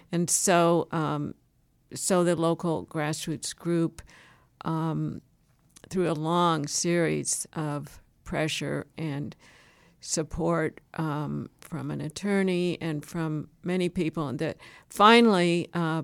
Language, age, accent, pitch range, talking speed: English, 50-69, American, 155-180 Hz, 110 wpm